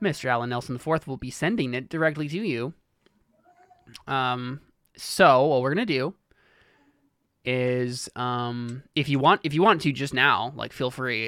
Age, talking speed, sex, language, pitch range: 20-39, 165 wpm, male, English, 120-145 Hz